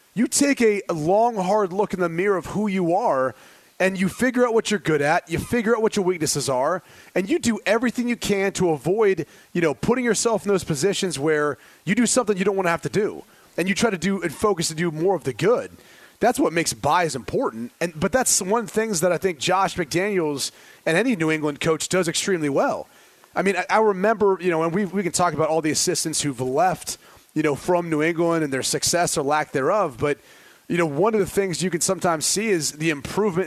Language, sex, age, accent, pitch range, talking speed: English, male, 30-49, American, 160-205 Hz, 245 wpm